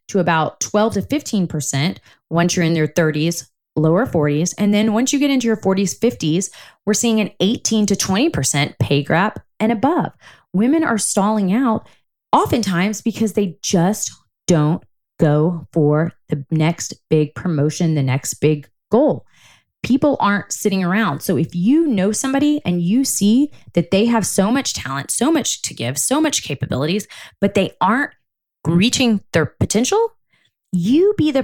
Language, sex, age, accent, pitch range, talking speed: English, female, 20-39, American, 160-235 Hz, 160 wpm